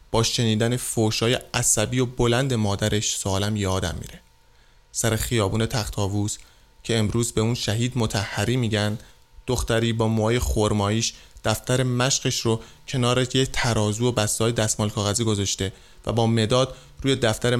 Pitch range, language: 105-120 Hz, Persian